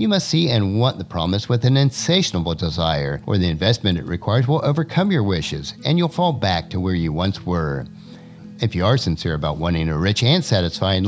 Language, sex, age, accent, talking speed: English, male, 50-69, American, 210 wpm